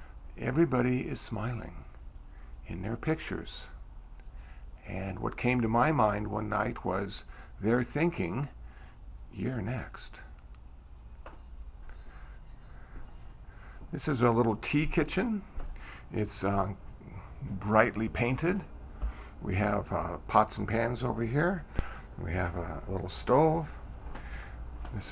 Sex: male